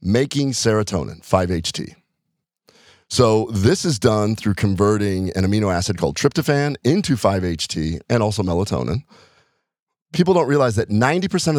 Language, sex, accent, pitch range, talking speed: English, male, American, 95-125 Hz, 125 wpm